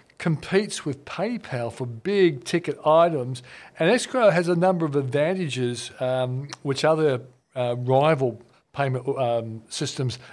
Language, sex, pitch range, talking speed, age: English, male, 125-165 Hz, 130 wpm, 50-69